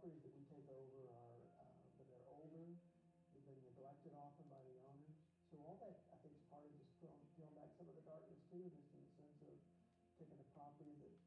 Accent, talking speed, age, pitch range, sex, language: American, 220 wpm, 50-69, 140-170 Hz, male, English